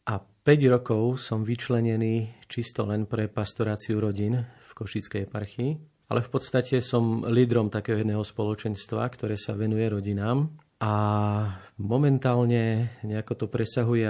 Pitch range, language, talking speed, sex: 105-125 Hz, Slovak, 125 wpm, male